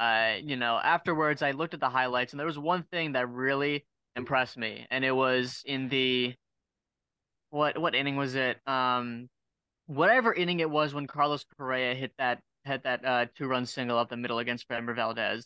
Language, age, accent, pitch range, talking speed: English, 20-39, American, 125-150 Hz, 195 wpm